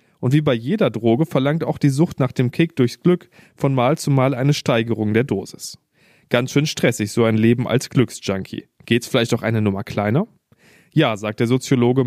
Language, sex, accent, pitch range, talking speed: German, male, German, 120-150 Hz, 200 wpm